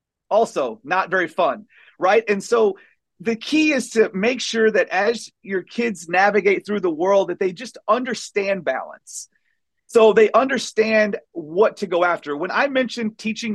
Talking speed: 165 wpm